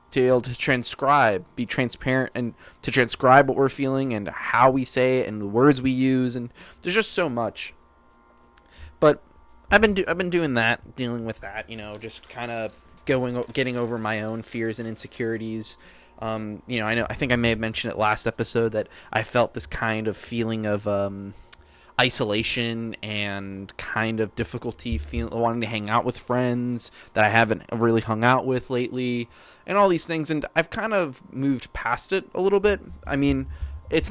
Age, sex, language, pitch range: 20-39, male, English, 110-130 Hz